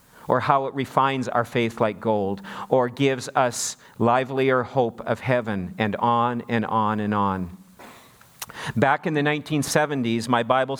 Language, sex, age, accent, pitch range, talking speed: English, male, 40-59, American, 110-130 Hz, 150 wpm